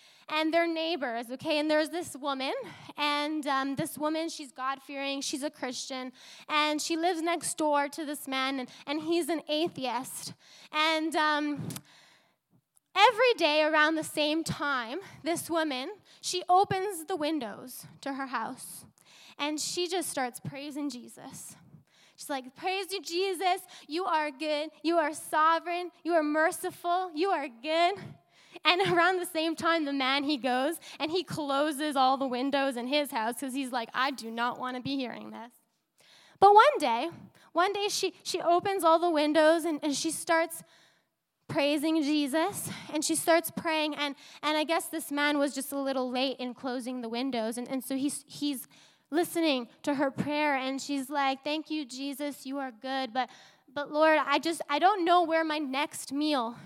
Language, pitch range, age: English, 270-330 Hz, 10-29